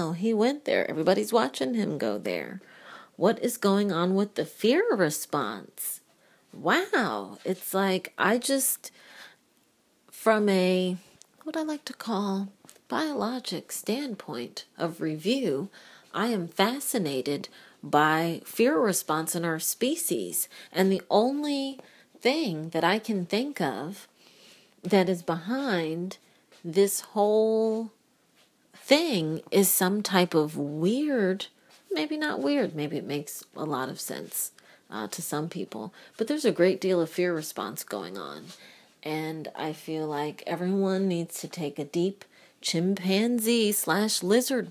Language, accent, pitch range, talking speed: English, American, 165-225 Hz, 130 wpm